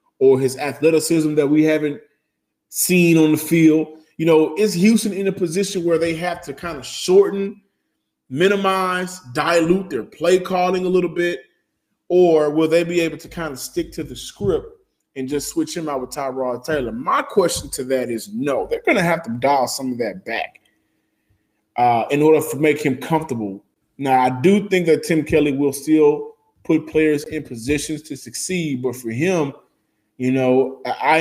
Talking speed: 185 wpm